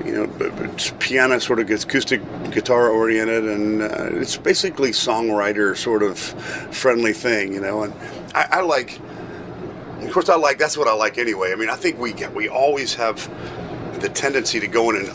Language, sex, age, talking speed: English, male, 40-59, 200 wpm